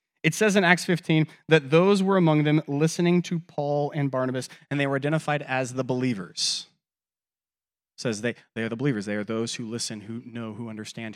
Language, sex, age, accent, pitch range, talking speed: English, male, 30-49, American, 110-155 Hz, 205 wpm